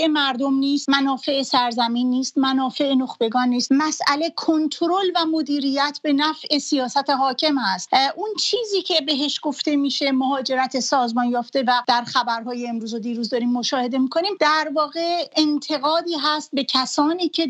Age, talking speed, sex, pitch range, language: 40-59, 145 wpm, female, 265-320 Hz, English